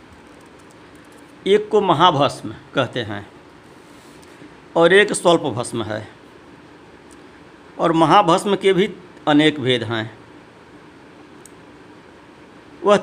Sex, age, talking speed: male, 50-69, 85 wpm